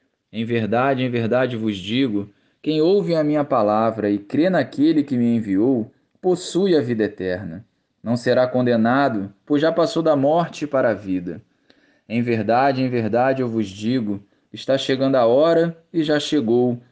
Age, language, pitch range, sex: 20-39, Portuguese, 115-160 Hz, male